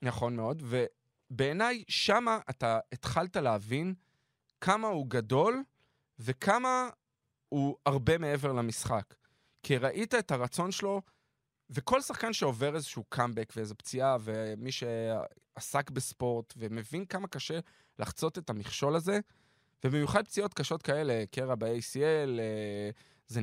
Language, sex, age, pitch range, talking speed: Hebrew, male, 20-39, 115-155 Hz, 115 wpm